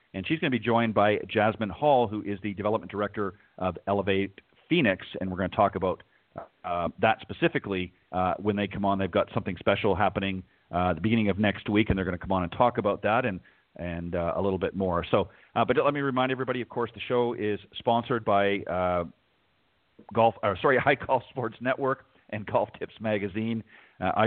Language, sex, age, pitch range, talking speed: English, male, 40-59, 95-115 Hz, 215 wpm